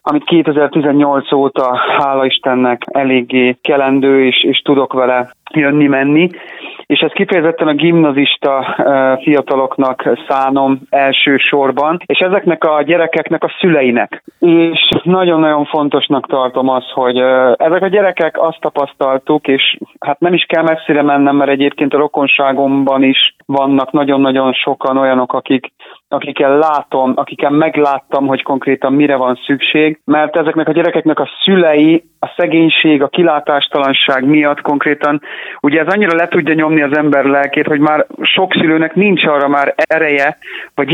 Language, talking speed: Hungarian, 135 wpm